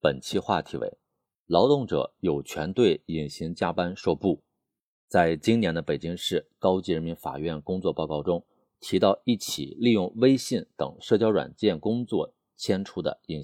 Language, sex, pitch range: Chinese, male, 75-110 Hz